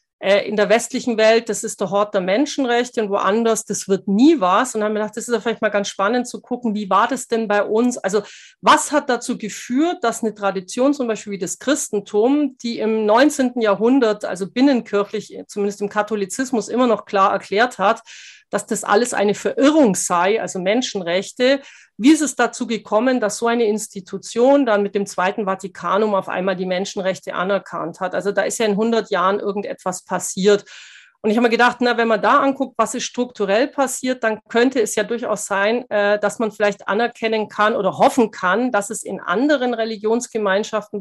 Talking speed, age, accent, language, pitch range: 195 wpm, 40-59, German, German, 200-240 Hz